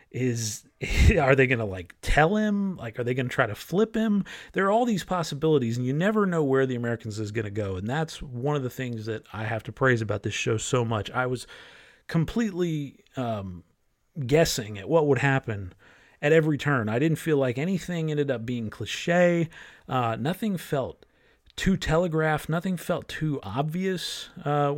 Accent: American